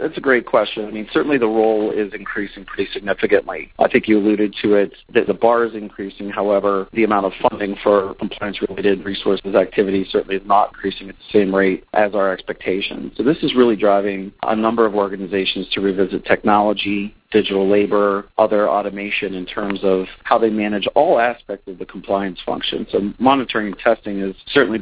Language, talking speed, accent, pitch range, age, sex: English, 190 wpm, American, 95-105 Hz, 40-59, male